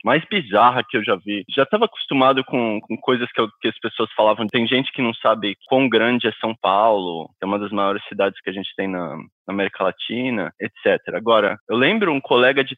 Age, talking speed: 20-39, 230 wpm